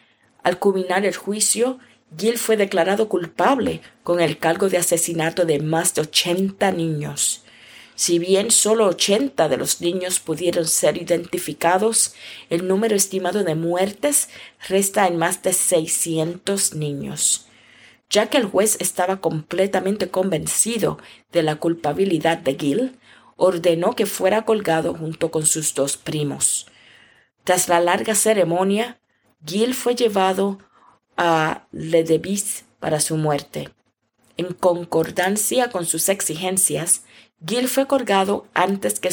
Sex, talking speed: female, 125 wpm